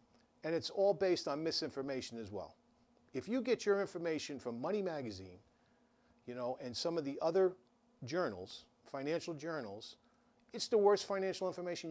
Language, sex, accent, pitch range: English, male, American, 135-195 Hz